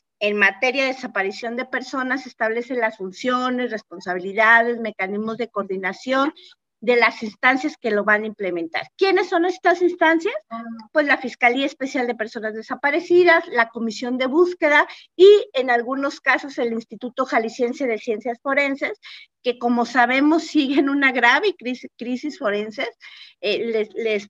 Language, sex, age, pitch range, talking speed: Spanish, female, 40-59, 220-285 Hz, 145 wpm